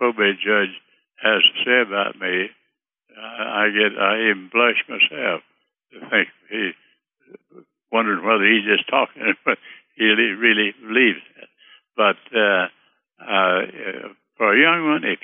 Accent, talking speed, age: American, 130 wpm, 60-79